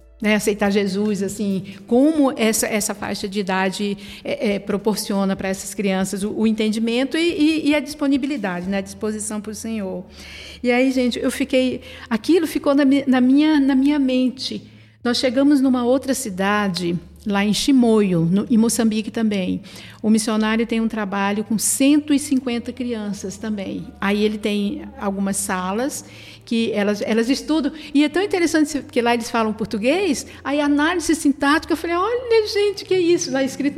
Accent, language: Brazilian, Portuguese